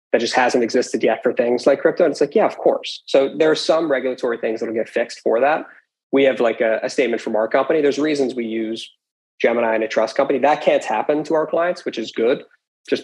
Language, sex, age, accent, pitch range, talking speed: English, male, 20-39, American, 115-160 Hz, 245 wpm